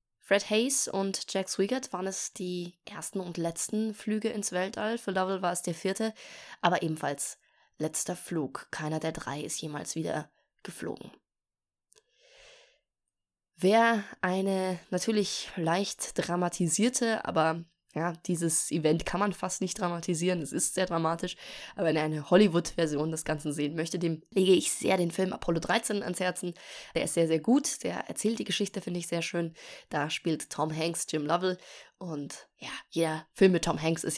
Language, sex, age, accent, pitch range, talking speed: German, female, 20-39, German, 165-195 Hz, 165 wpm